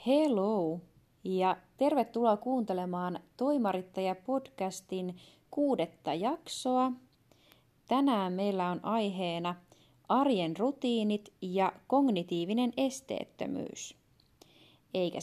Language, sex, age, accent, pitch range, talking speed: Finnish, female, 20-39, native, 175-215 Hz, 65 wpm